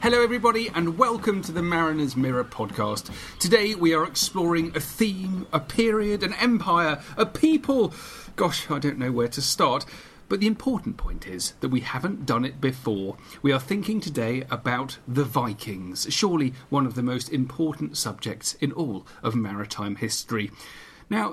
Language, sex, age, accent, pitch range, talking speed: English, male, 40-59, British, 130-185 Hz, 165 wpm